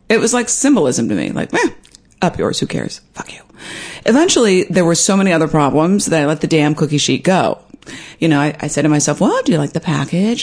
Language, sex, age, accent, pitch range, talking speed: English, female, 40-59, American, 150-220 Hz, 240 wpm